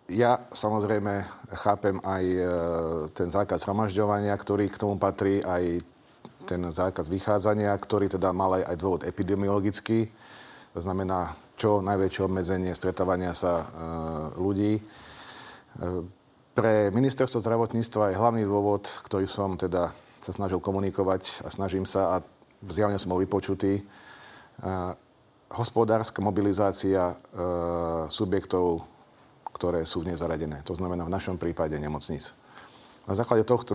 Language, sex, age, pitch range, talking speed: Slovak, male, 40-59, 90-105 Hz, 125 wpm